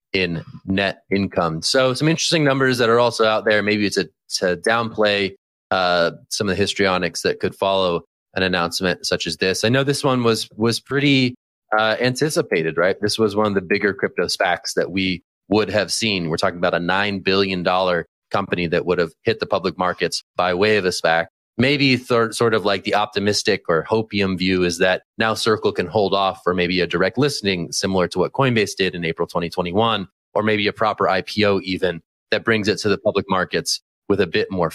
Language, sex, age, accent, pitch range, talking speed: English, male, 30-49, American, 90-110 Hz, 205 wpm